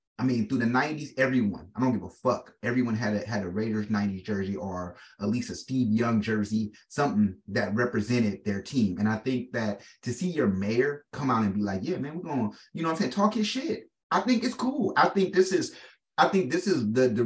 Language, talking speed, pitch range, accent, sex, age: English, 245 wpm, 110-170 Hz, American, male, 30-49